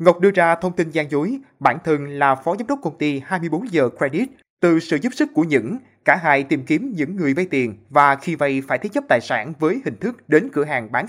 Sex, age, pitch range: male, 20-39, 140-175 Hz